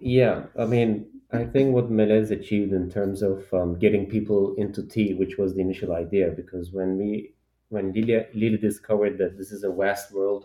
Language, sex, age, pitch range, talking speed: Turkish, male, 30-49, 95-110 Hz, 190 wpm